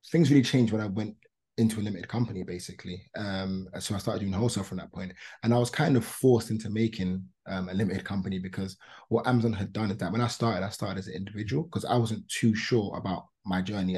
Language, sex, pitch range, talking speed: English, male, 100-120 Hz, 235 wpm